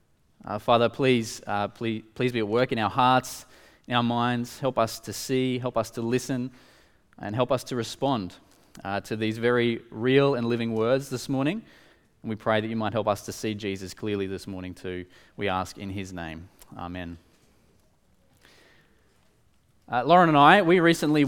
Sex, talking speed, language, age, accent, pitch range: male, 185 wpm, English, 20-39, Australian, 115-150 Hz